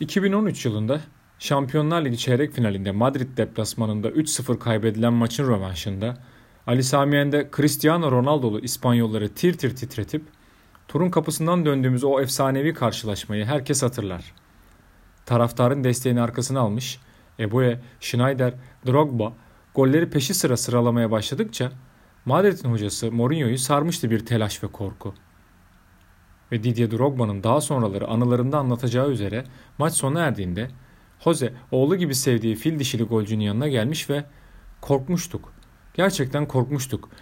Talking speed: 115 wpm